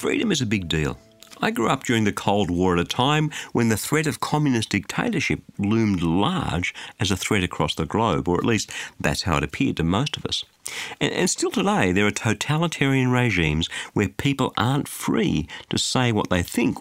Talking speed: 205 wpm